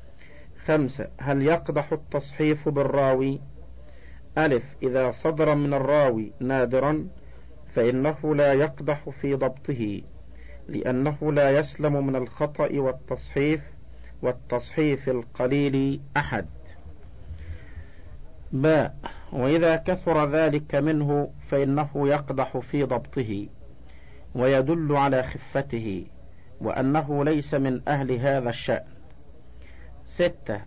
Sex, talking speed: male, 85 wpm